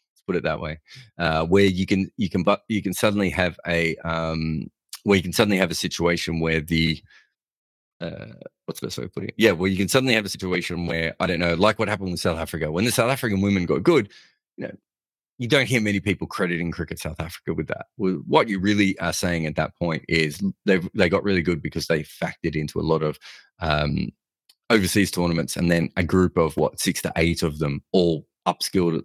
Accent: Australian